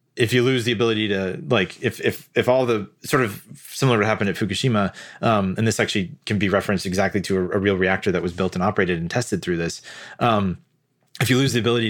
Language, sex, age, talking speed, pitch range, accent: English, male, 30-49, 240 wpm, 95-120 Hz, American